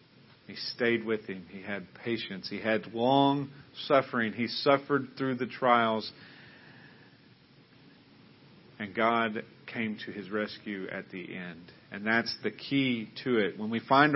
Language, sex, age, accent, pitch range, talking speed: English, male, 40-59, American, 115-140 Hz, 145 wpm